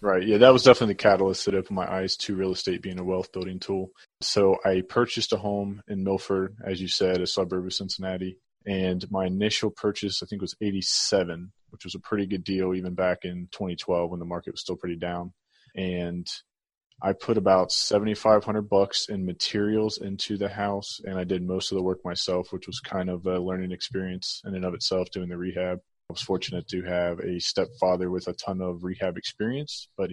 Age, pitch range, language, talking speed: 20-39, 90-100 Hz, English, 205 wpm